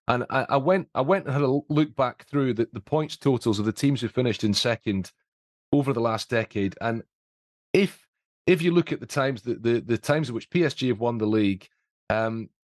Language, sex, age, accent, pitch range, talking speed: English, male, 30-49, British, 110-130 Hz, 220 wpm